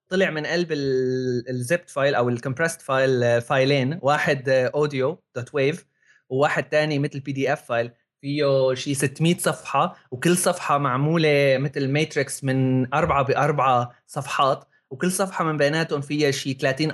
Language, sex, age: Arabic, male, 20-39